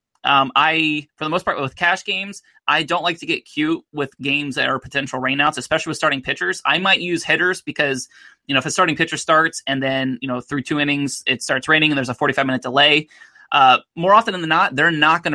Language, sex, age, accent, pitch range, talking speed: English, male, 20-39, American, 135-160 Hz, 240 wpm